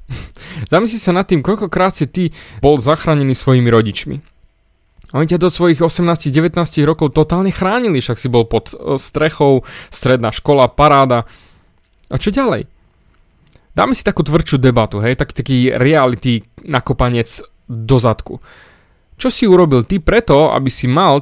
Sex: male